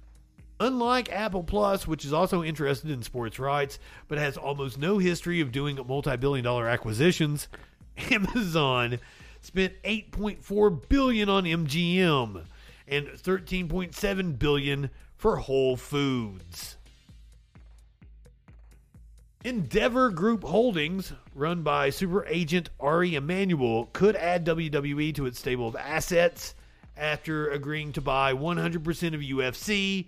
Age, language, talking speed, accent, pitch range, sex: 40-59, English, 110 wpm, American, 140-200 Hz, male